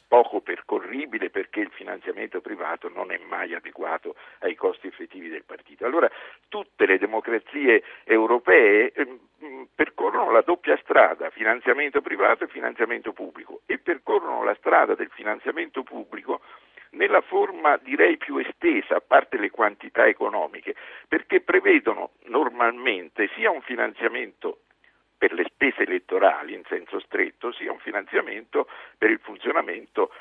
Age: 50-69